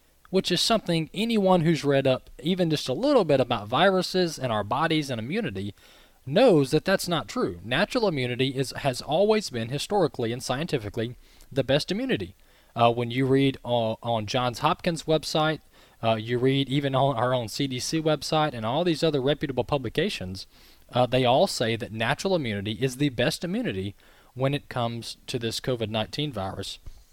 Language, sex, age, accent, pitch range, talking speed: English, male, 20-39, American, 115-155 Hz, 170 wpm